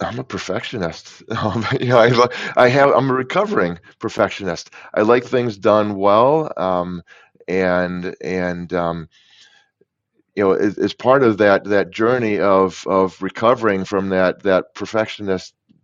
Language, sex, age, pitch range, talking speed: English, male, 30-49, 95-115 Hz, 140 wpm